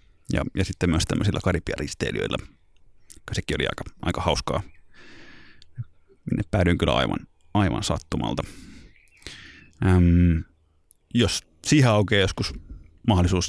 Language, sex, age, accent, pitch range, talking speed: Finnish, male, 30-49, native, 85-110 Hz, 100 wpm